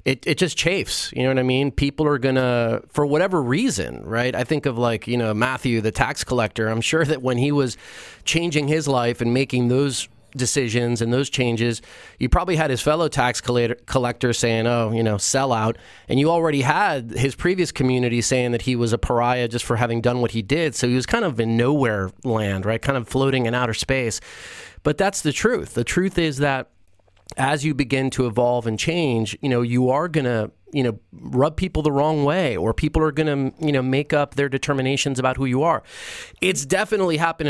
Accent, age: American, 30-49